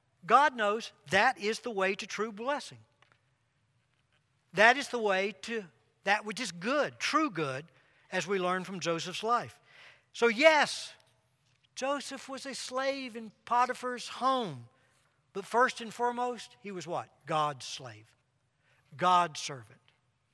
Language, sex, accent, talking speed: English, male, American, 135 wpm